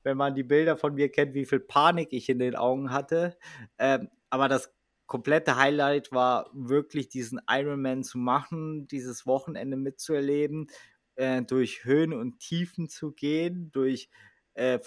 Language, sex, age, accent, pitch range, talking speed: German, male, 20-39, German, 130-160 Hz, 155 wpm